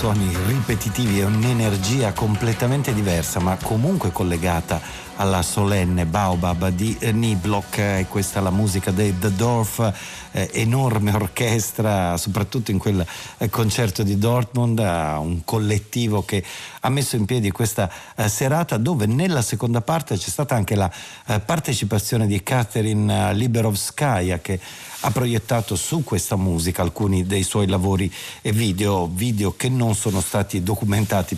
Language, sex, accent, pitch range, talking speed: Italian, male, native, 95-115 Hz, 130 wpm